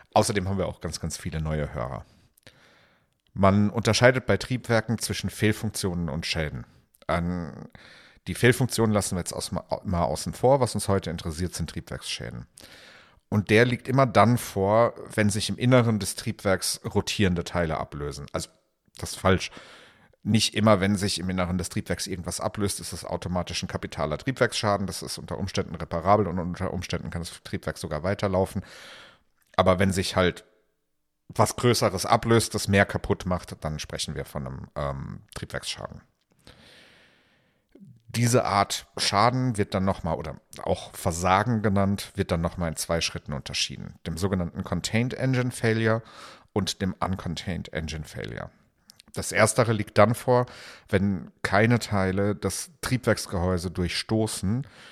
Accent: German